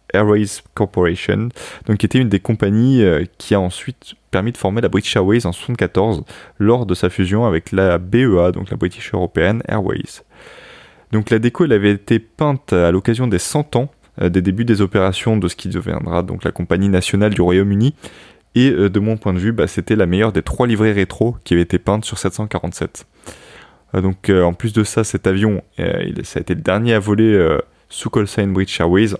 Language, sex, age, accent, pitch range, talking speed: French, male, 20-39, French, 90-110 Hz, 205 wpm